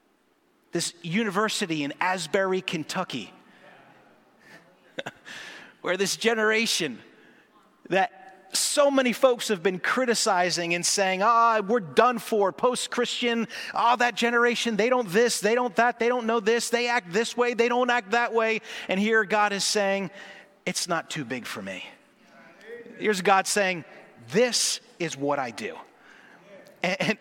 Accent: American